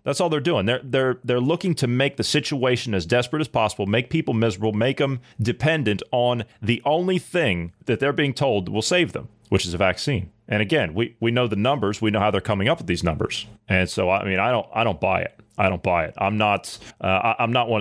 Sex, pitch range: male, 105-145 Hz